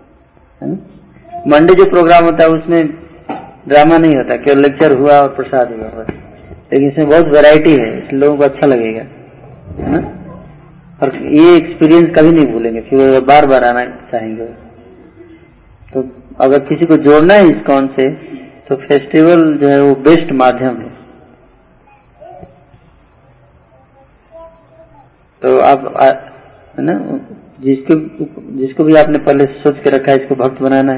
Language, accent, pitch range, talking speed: Hindi, native, 130-155 Hz, 135 wpm